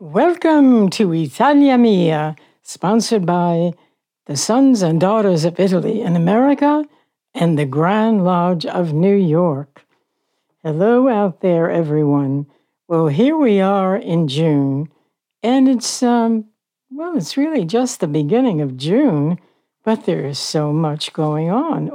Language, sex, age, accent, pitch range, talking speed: English, female, 60-79, American, 155-215 Hz, 135 wpm